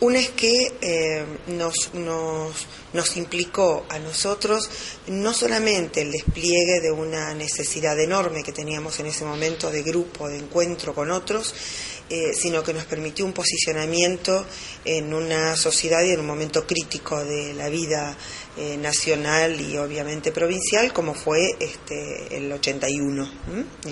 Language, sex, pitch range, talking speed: Spanish, female, 145-170 Hz, 145 wpm